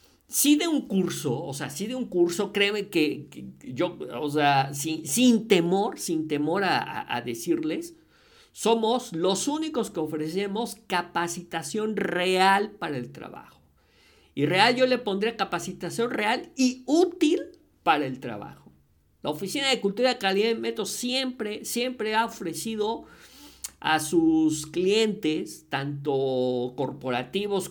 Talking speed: 135 wpm